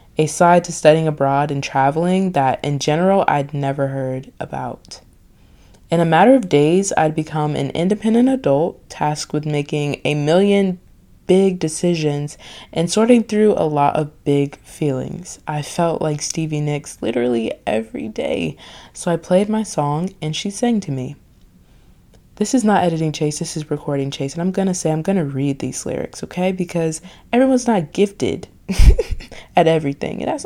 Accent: American